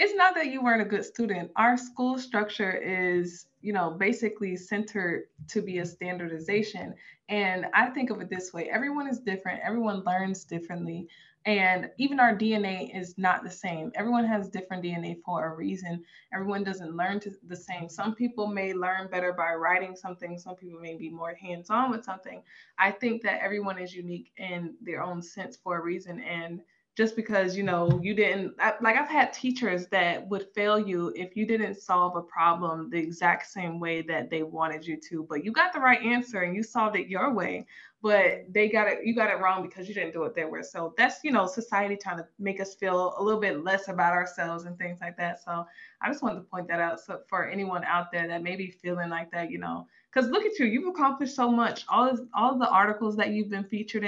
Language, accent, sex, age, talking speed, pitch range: English, American, female, 20-39, 220 wpm, 175-215 Hz